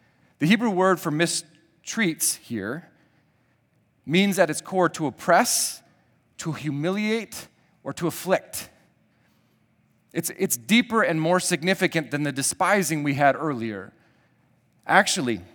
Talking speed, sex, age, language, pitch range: 115 wpm, male, 40-59, English, 145-180 Hz